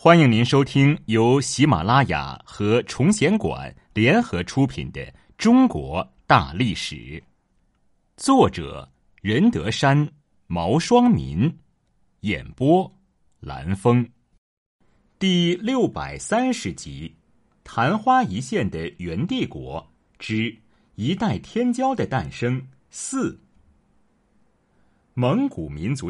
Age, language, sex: 30-49, Chinese, male